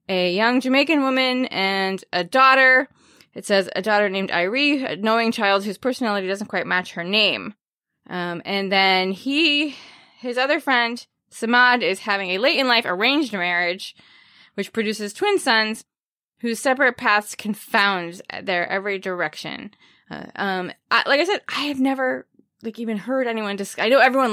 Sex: female